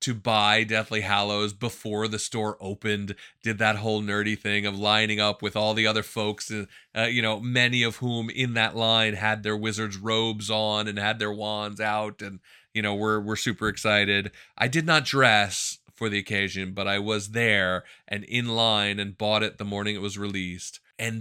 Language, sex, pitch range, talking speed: English, male, 105-120 Hz, 200 wpm